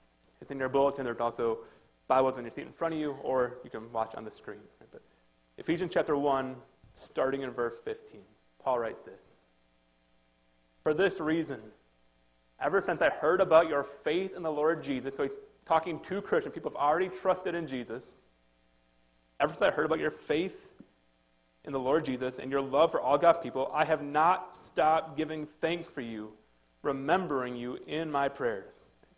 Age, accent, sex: 30-49, American, male